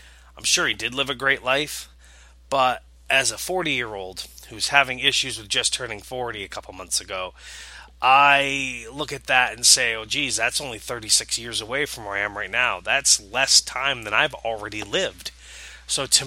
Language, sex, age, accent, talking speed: English, male, 20-39, American, 190 wpm